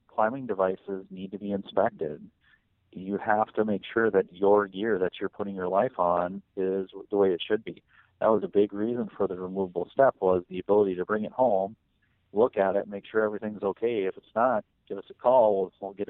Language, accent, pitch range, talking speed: English, American, 90-105 Hz, 220 wpm